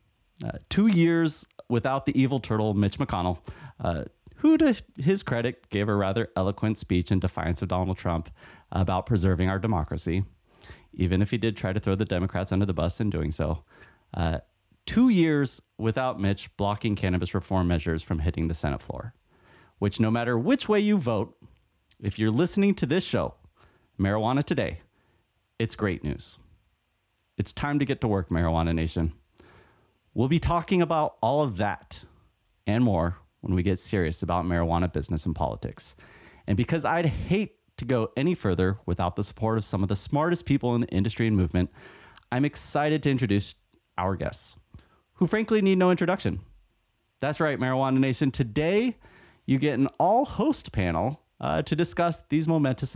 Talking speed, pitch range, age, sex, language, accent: 170 wpm, 90-135 Hz, 30-49, male, English, American